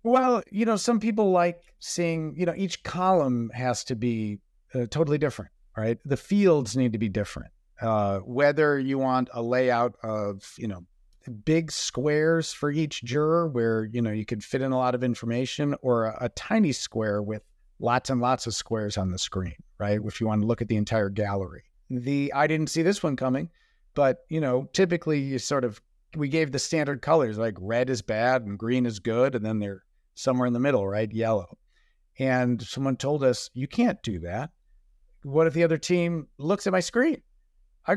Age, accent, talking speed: 40-59, American, 200 wpm